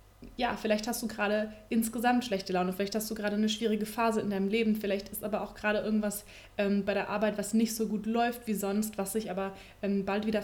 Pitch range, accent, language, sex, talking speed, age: 205-235 Hz, German, German, female, 235 wpm, 20-39